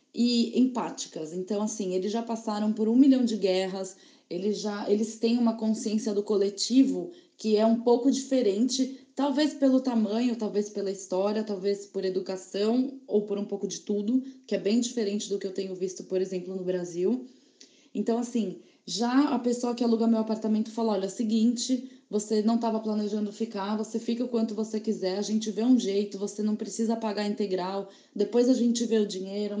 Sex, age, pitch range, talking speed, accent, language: female, 20-39, 205-240 Hz, 185 wpm, Brazilian, Portuguese